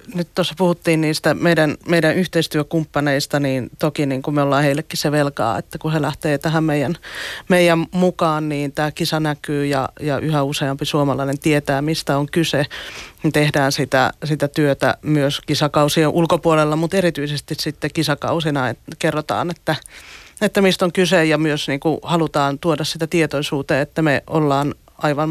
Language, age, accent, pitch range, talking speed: Finnish, 30-49, native, 145-165 Hz, 155 wpm